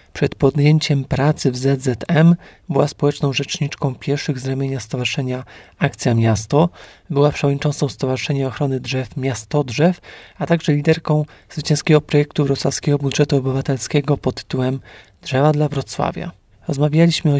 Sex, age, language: male, 40-59, Polish